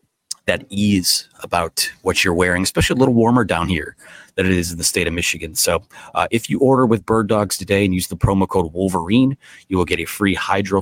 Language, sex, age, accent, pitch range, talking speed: English, male, 30-49, American, 90-110 Hz, 225 wpm